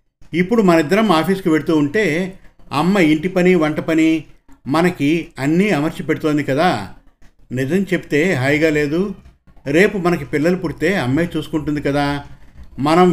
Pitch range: 140-175 Hz